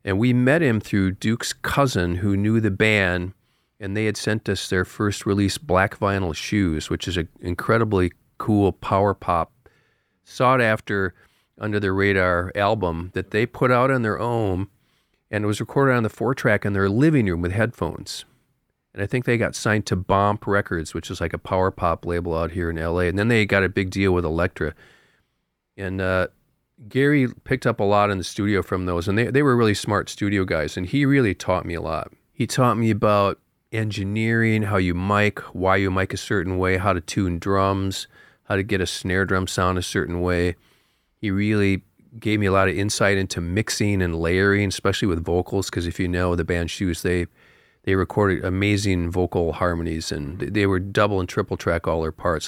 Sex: male